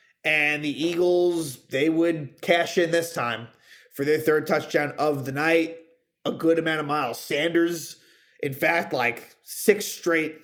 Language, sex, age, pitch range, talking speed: English, male, 30-49, 155-180 Hz, 155 wpm